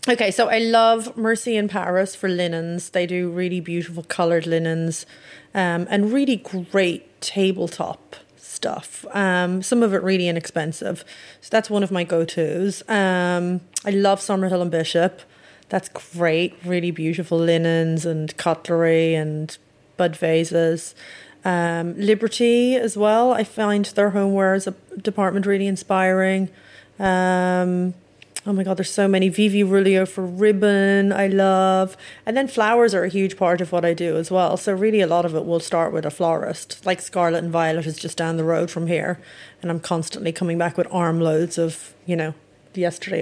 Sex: female